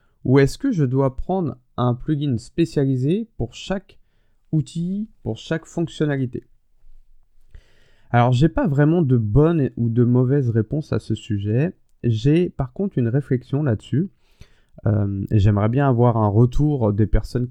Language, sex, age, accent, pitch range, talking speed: French, male, 20-39, French, 105-140 Hz, 145 wpm